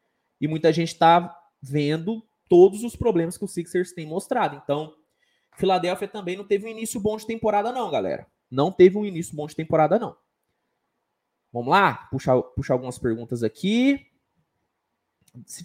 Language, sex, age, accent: Portuguese, male, 20-39, Brazilian